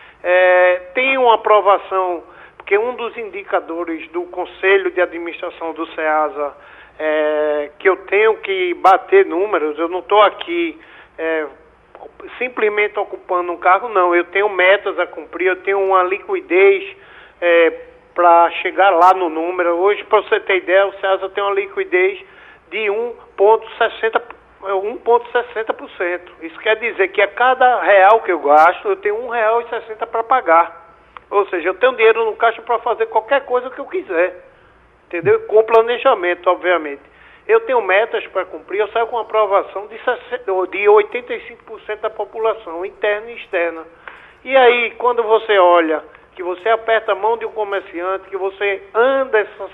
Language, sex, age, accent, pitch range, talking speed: Portuguese, male, 50-69, Brazilian, 180-245 Hz, 145 wpm